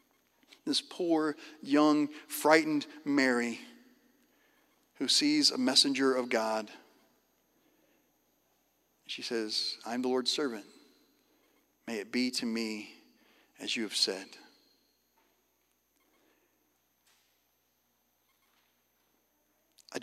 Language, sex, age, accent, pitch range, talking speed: English, male, 40-59, American, 110-145 Hz, 80 wpm